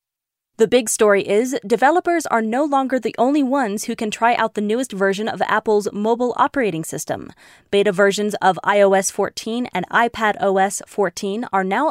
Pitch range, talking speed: 205-245 Hz, 165 wpm